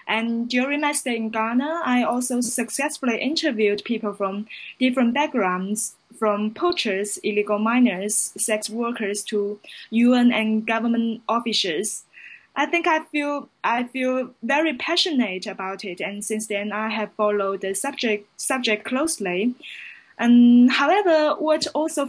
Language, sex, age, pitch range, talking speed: English, female, 10-29, 210-255 Hz, 135 wpm